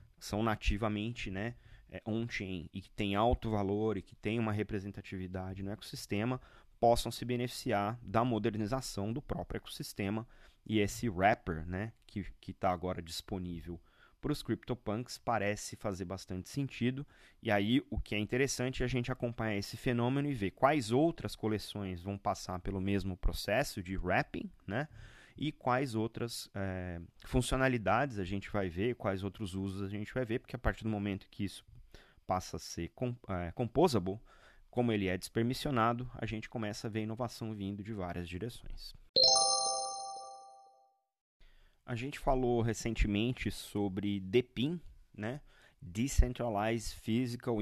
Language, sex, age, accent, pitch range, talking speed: Portuguese, male, 20-39, Brazilian, 95-125 Hz, 145 wpm